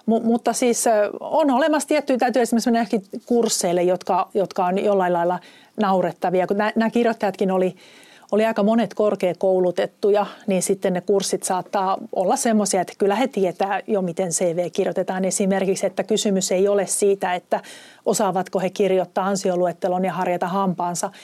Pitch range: 185-220 Hz